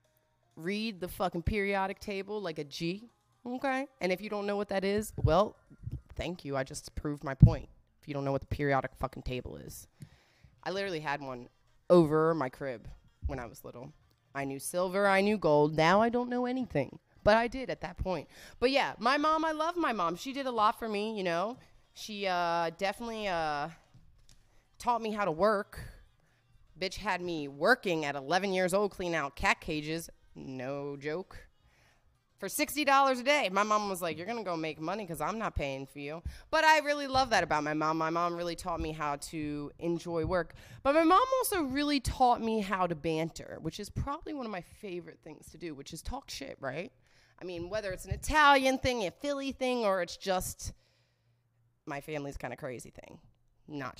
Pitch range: 145-235 Hz